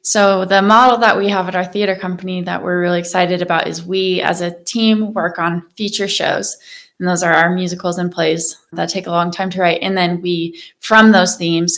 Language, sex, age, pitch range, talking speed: English, female, 20-39, 170-190 Hz, 225 wpm